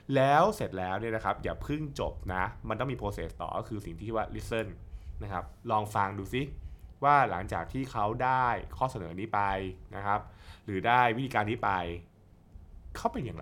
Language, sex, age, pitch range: Thai, male, 20-39, 90-125 Hz